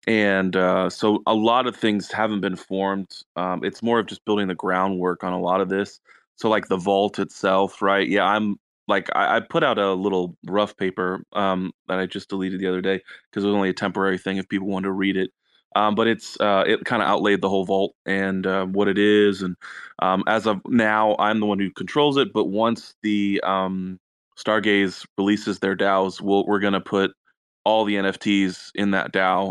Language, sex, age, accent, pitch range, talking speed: English, male, 20-39, American, 95-105 Hz, 215 wpm